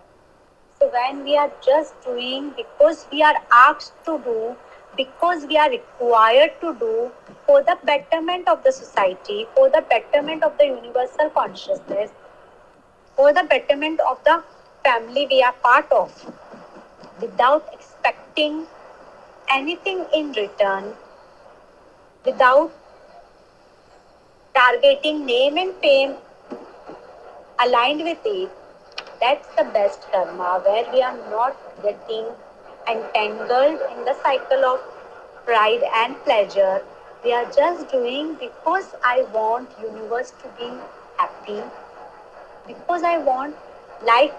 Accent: native